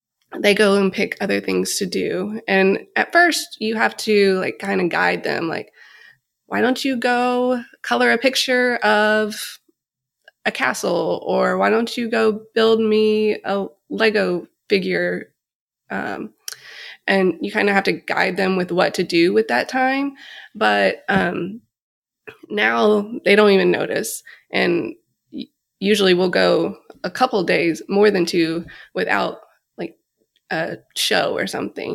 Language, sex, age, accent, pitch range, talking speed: English, female, 20-39, American, 185-240 Hz, 150 wpm